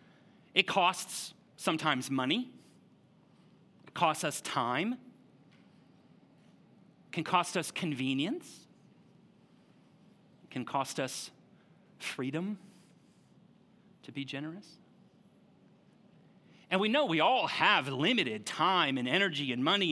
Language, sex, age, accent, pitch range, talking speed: English, male, 30-49, American, 140-205 Hz, 100 wpm